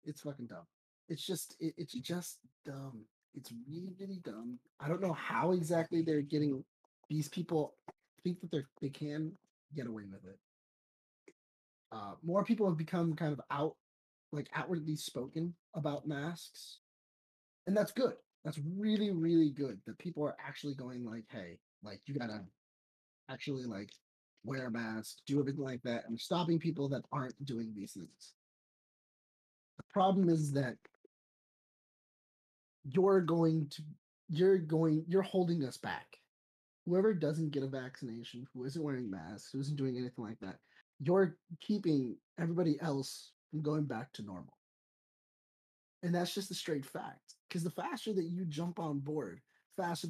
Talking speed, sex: 155 wpm, male